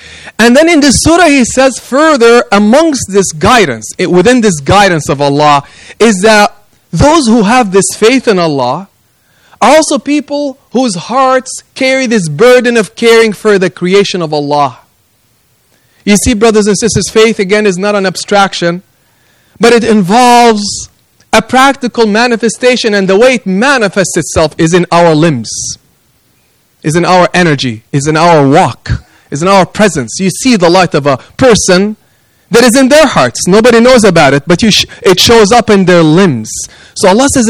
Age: 30-49